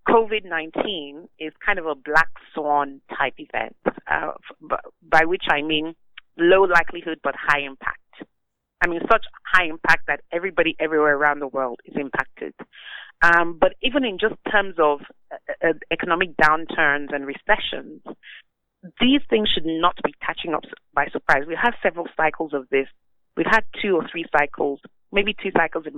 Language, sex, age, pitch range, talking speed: English, female, 30-49, 150-185 Hz, 160 wpm